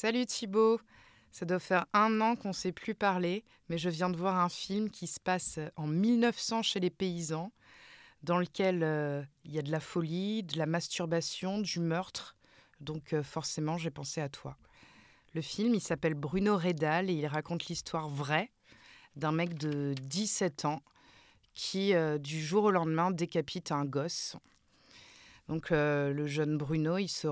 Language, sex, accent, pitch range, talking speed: French, female, French, 150-185 Hz, 175 wpm